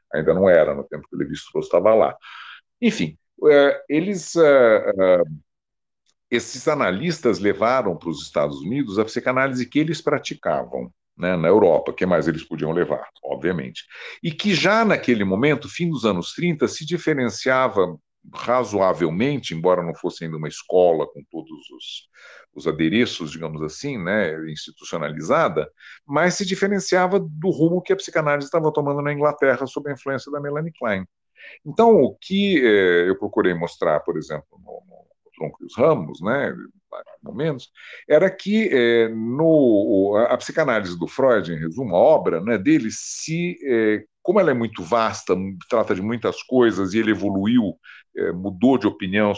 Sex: male